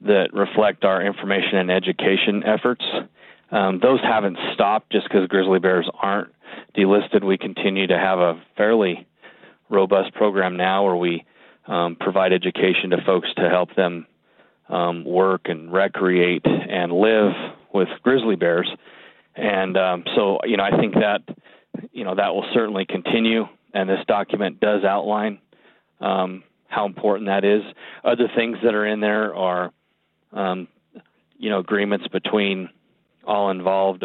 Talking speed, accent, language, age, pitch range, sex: 145 wpm, American, English, 30-49, 90-100 Hz, male